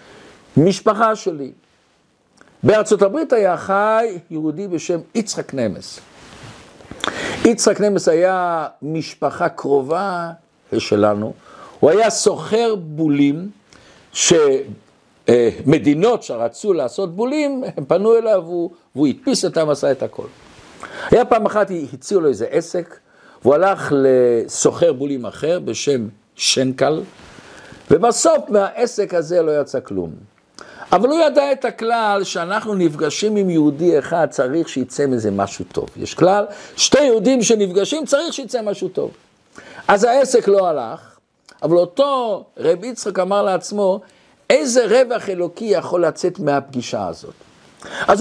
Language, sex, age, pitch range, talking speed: Hebrew, male, 50-69, 155-230 Hz, 120 wpm